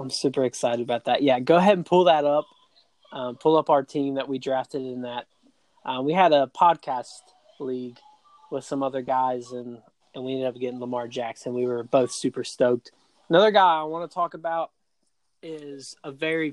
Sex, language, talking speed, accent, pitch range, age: male, English, 200 wpm, American, 125-150 Hz, 20-39